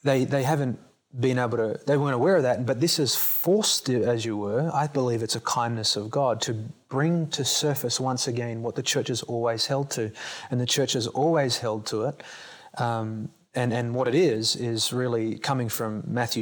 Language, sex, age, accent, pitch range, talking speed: English, male, 30-49, Australian, 115-130 Hz, 210 wpm